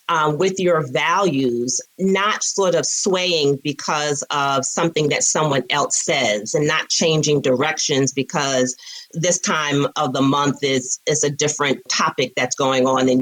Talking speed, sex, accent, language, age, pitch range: 155 wpm, female, American, English, 40-59, 135-180 Hz